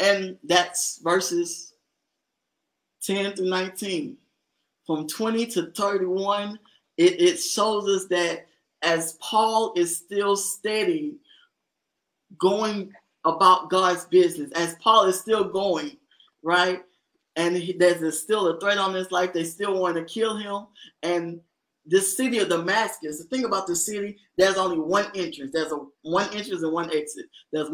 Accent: American